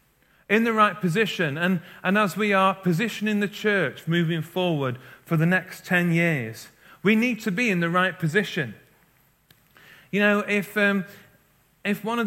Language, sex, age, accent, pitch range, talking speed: English, male, 40-59, British, 155-195 Hz, 165 wpm